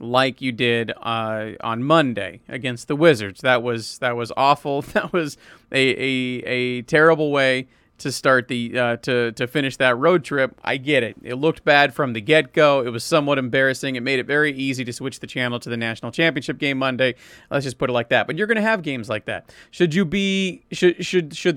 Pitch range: 125-160 Hz